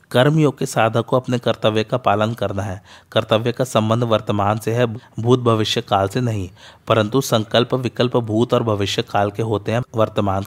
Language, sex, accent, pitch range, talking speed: Hindi, male, native, 105-125 Hz, 185 wpm